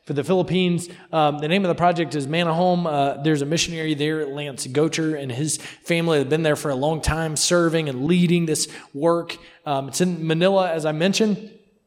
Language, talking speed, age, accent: English, 200 wpm, 20-39, American